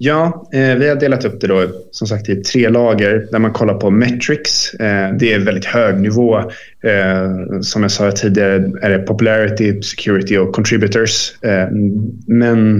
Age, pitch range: 20-39, 105-120 Hz